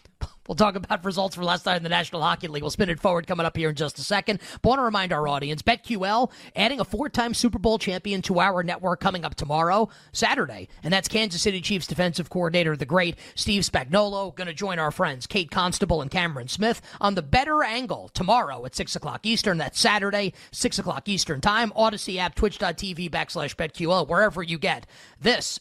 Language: English